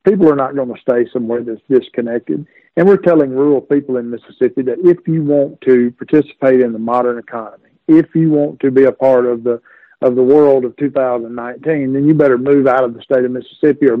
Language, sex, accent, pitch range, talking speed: English, male, American, 125-155 Hz, 220 wpm